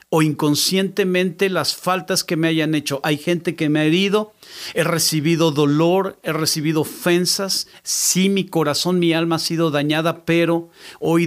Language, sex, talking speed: Spanish, male, 160 wpm